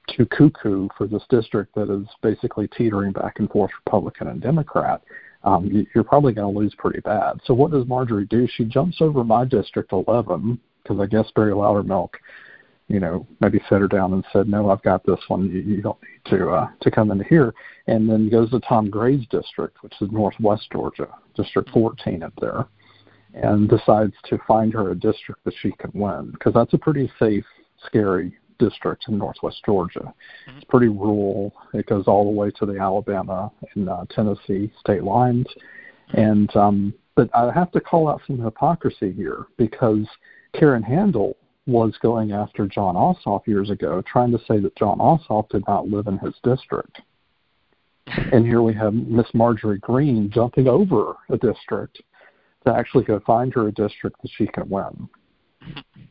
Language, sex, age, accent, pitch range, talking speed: English, male, 50-69, American, 100-120 Hz, 180 wpm